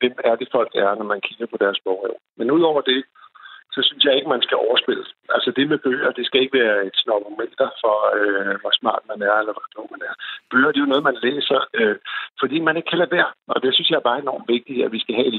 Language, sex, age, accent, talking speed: Danish, male, 60-79, native, 275 wpm